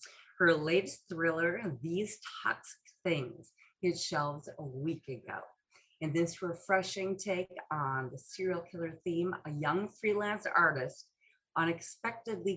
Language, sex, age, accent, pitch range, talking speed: English, female, 30-49, American, 160-195 Hz, 120 wpm